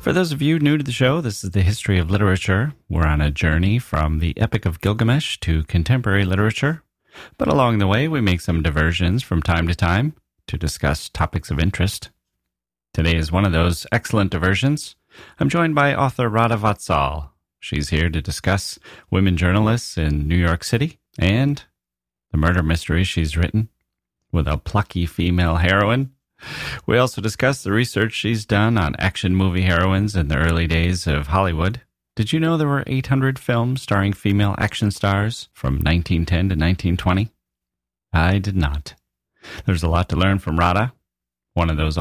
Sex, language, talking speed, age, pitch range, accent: male, English, 175 wpm, 30-49, 80-110 Hz, American